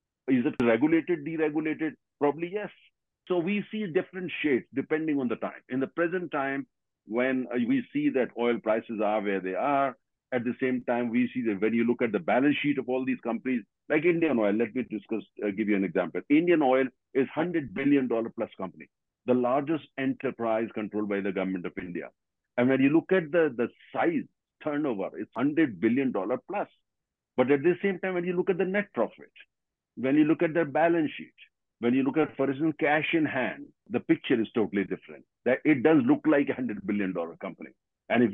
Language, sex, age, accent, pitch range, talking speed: English, male, 50-69, Indian, 115-165 Hz, 205 wpm